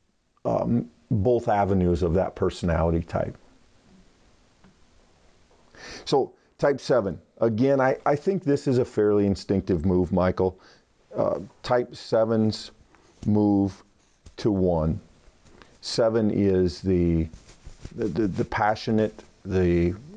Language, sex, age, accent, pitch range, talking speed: English, male, 50-69, American, 95-115 Hz, 105 wpm